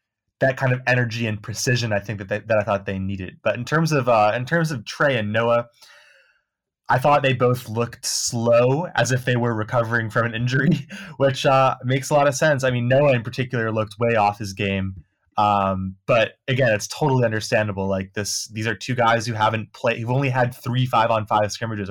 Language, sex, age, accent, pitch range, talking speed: English, male, 20-39, American, 105-125 Hz, 220 wpm